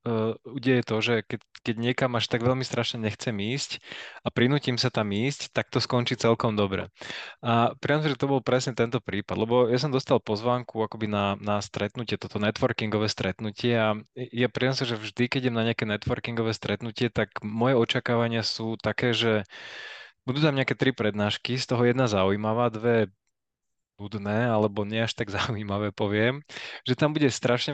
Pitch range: 110-125 Hz